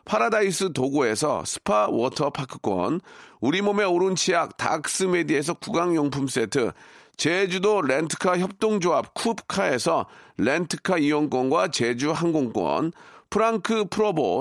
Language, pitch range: Korean, 160-210 Hz